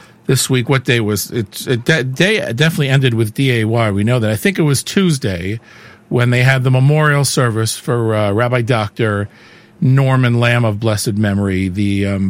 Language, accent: English, American